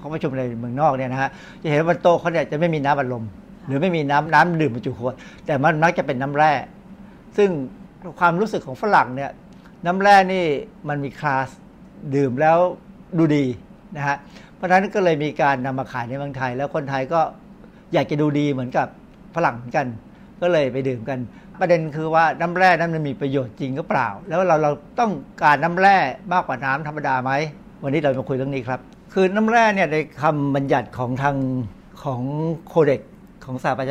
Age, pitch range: 60-79, 135-180 Hz